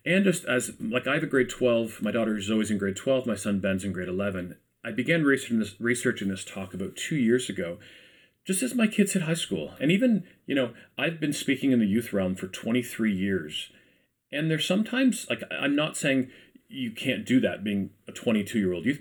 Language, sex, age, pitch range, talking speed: English, male, 40-59, 100-135 Hz, 225 wpm